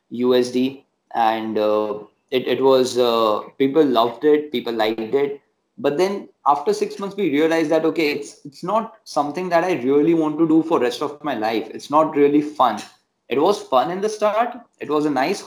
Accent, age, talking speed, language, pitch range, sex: native, 20-39, 200 wpm, Hindi, 125-155 Hz, male